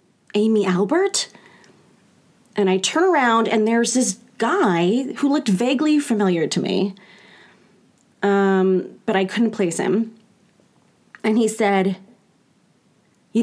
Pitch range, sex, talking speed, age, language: 195-235 Hz, female, 115 wpm, 30-49, English